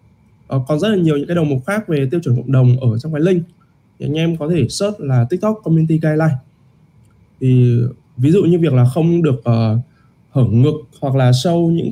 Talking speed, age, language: 220 wpm, 20-39, Vietnamese